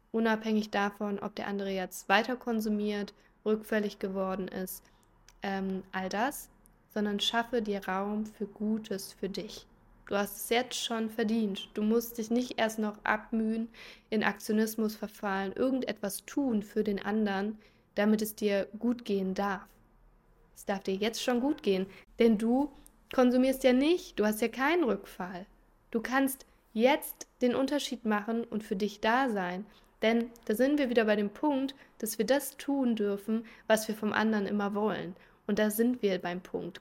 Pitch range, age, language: 200-235 Hz, 20-39, German